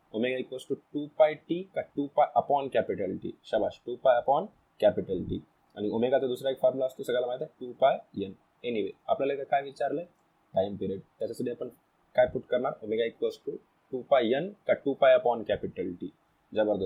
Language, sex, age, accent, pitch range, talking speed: Hindi, male, 20-39, native, 115-160 Hz, 60 wpm